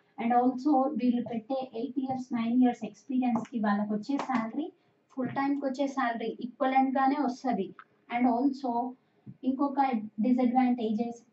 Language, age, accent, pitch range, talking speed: Telugu, 20-39, native, 215-260 Hz, 175 wpm